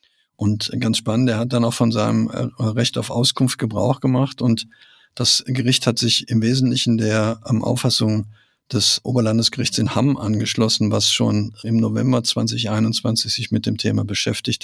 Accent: German